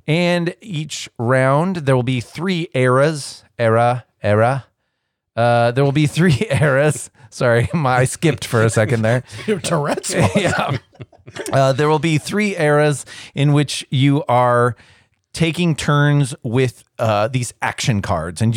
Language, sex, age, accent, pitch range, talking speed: English, male, 30-49, American, 105-140 Hz, 140 wpm